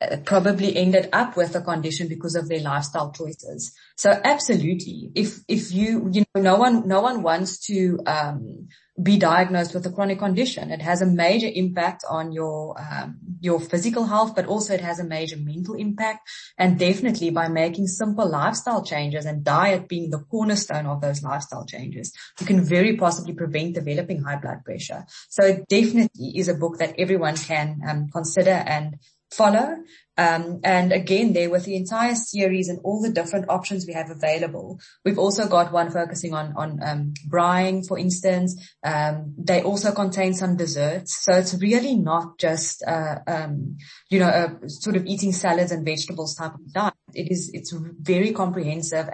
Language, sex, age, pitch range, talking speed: English, female, 20-39, 160-195 Hz, 175 wpm